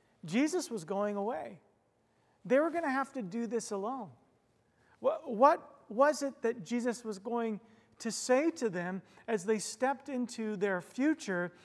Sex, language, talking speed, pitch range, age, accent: male, English, 155 wpm, 200-250 Hz, 40-59, American